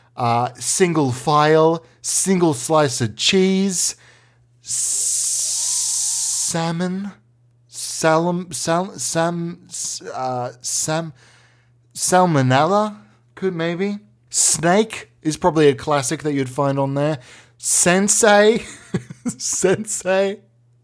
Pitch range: 125-190 Hz